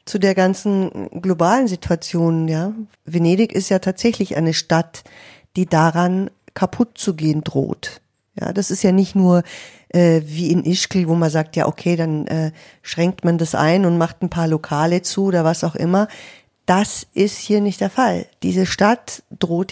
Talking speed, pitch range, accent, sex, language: 175 wpm, 165-200 Hz, German, female, German